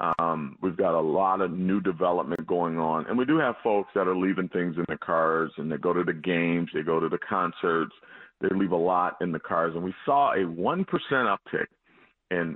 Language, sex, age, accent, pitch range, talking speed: English, male, 40-59, American, 80-95 Hz, 225 wpm